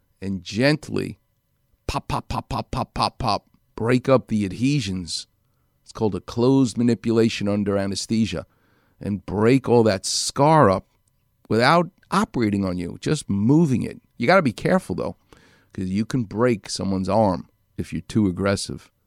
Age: 50-69